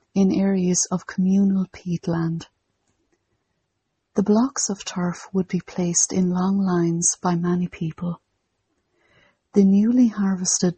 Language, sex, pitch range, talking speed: English, female, 170-195 Hz, 120 wpm